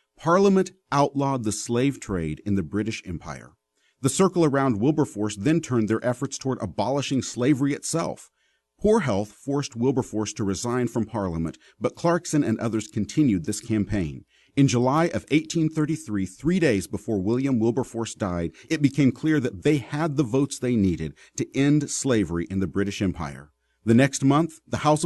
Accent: American